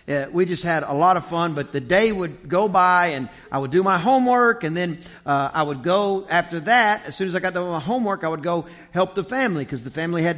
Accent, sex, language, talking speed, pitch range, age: American, male, English, 270 wpm, 140-190 Hz, 40-59